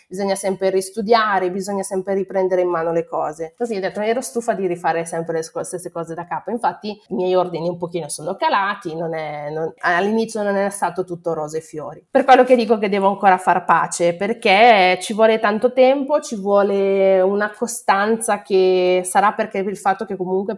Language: Italian